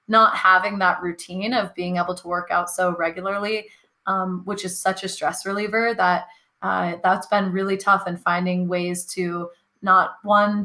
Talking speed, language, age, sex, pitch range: 175 wpm, English, 20-39, female, 180-200 Hz